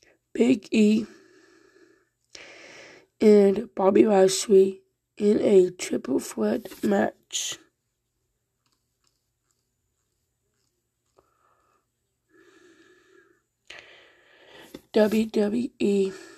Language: English